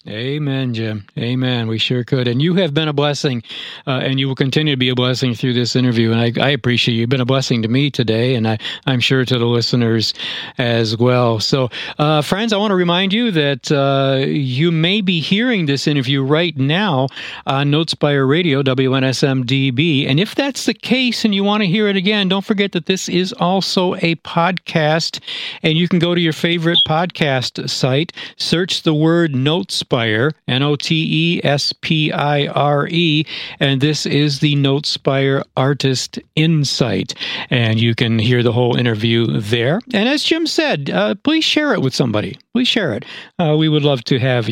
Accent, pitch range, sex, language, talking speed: American, 130-190 Hz, male, English, 180 wpm